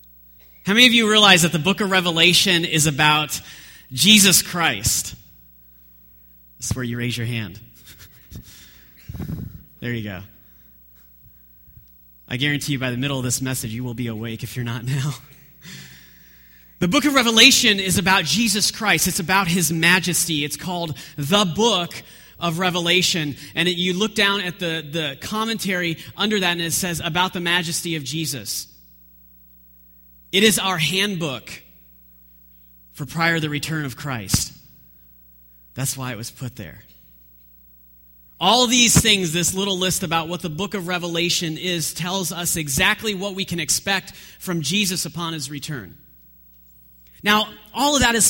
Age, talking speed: 30-49, 155 wpm